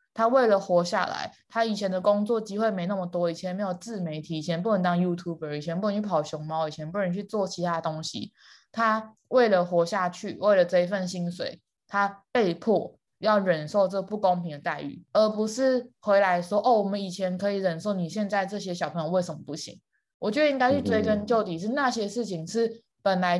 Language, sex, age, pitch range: Chinese, female, 20-39, 180-225 Hz